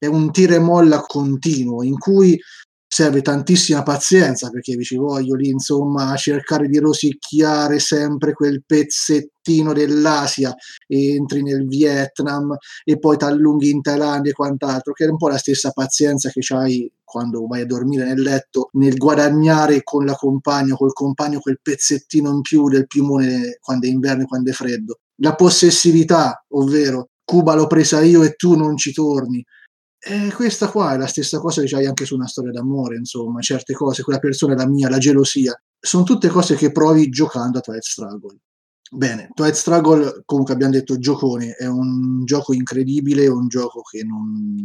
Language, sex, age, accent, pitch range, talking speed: Italian, male, 30-49, native, 130-150 Hz, 175 wpm